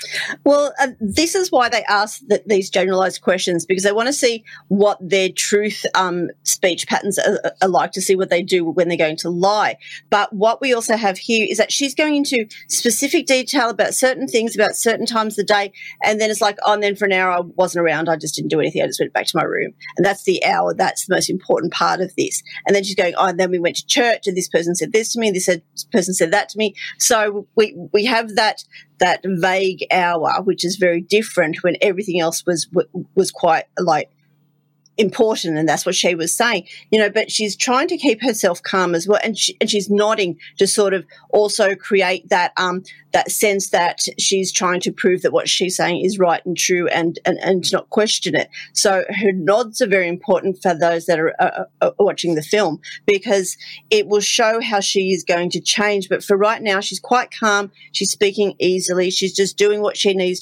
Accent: Australian